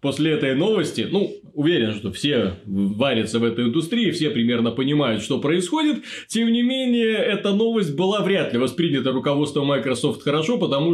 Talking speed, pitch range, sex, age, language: 160 wpm, 125-185 Hz, male, 20-39, Russian